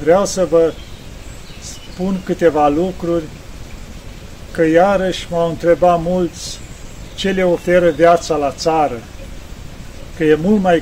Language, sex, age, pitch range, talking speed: Romanian, male, 40-59, 150-180 Hz, 115 wpm